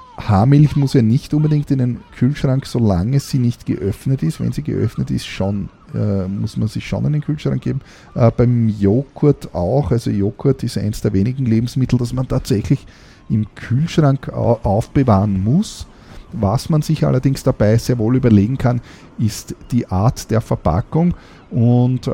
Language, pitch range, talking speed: German, 100-125 Hz, 160 wpm